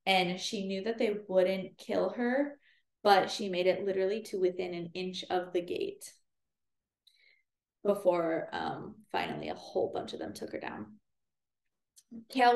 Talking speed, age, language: 155 wpm, 20-39, English